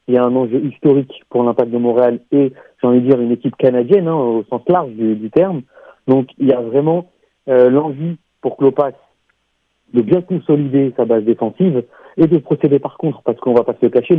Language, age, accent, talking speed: French, 40-59, French, 225 wpm